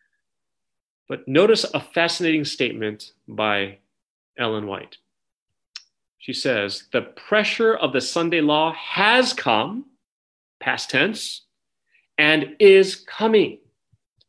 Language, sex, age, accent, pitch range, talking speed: English, male, 30-49, American, 125-170 Hz, 95 wpm